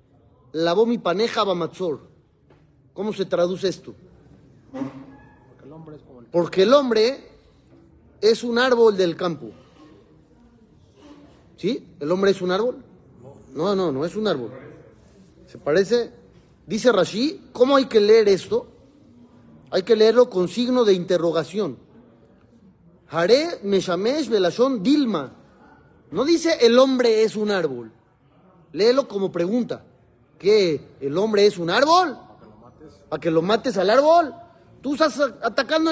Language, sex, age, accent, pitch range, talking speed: Spanish, male, 40-59, Mexican, 175-265 Hz, 120 wpm